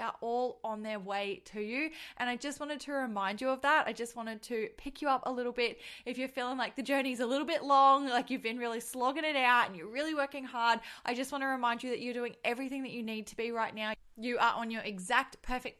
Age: 20-39